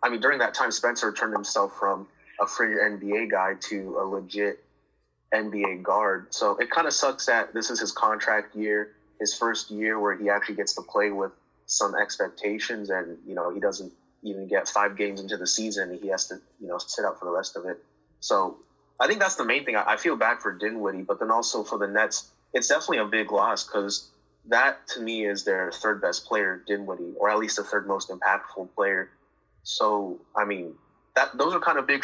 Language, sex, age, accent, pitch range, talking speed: English, male, 20-39, American, 100-110 Hz, 215 wpm